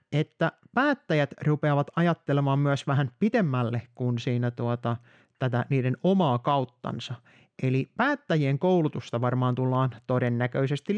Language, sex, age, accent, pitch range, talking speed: Finnish, male, 30-49, native, 130-180 Hz, 110 wpm